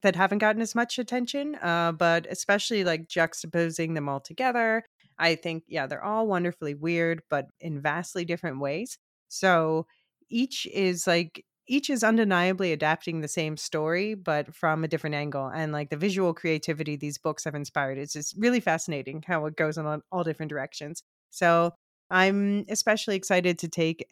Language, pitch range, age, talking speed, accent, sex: English, 155-195 Hz, 30-49, 170 wpm, American, female